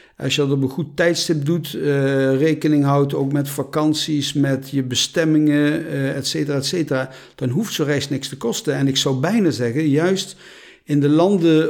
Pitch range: 130-155 Hz